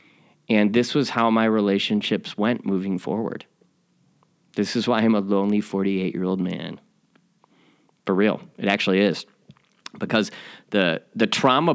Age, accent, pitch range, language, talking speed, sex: 30-49, American, 100-125 Hz, English, 135 wpm, male